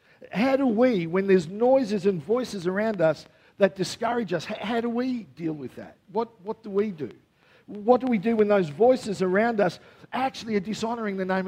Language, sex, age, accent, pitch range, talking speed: English, male, 50-69, Australian, 165-225 Hz, 200 wpm